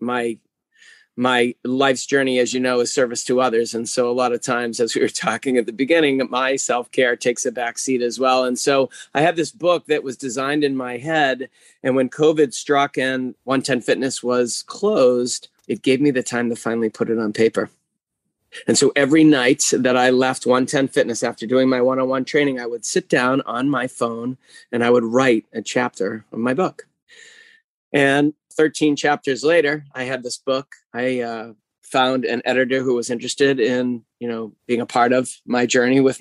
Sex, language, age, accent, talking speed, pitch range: male, English, 30-49, American, 195 wpm, 125-140 Hz